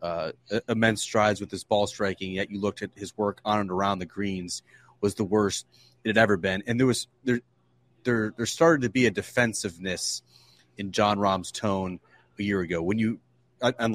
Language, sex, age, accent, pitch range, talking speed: English, male, 30-49, American, 95-110 Hz, 200 wpm